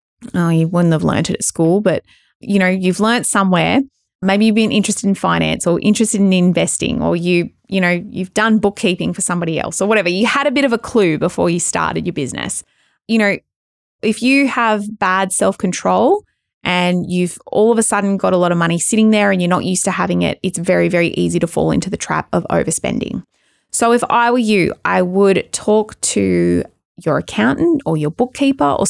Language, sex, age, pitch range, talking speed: English, female, 20-39, 180-220 Hz, 210 wpm